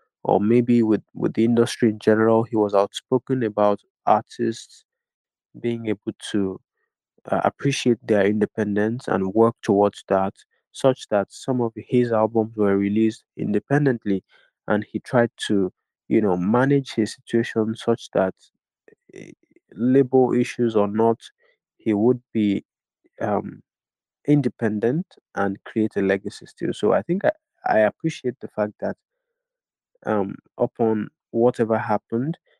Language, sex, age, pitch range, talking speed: English, male, 20-39, 105-130 Hz, 135 wpm